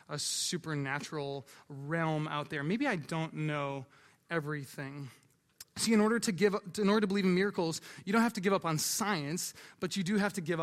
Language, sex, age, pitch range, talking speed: English, male, 20-39, 150-195 Hz, 205 wpm